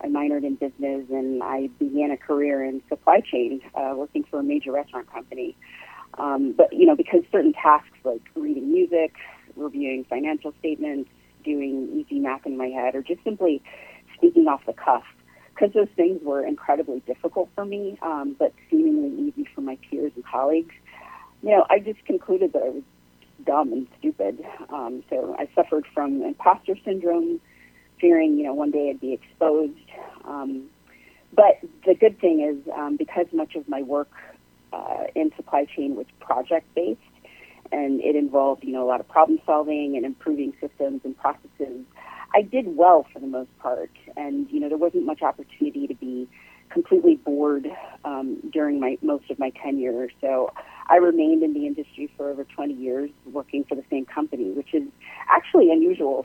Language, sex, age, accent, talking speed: English, female, 40-59, American, 175 wpm